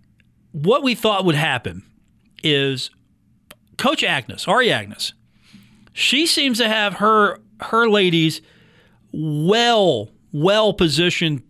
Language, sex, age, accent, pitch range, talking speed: English, male, 40-59, American, 140-195 Hz, 105 wpm